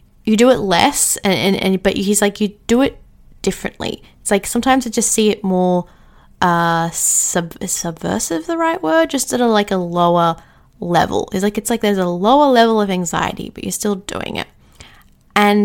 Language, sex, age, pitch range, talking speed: English, female, 20-39, 185-230 Hz, 195 wpm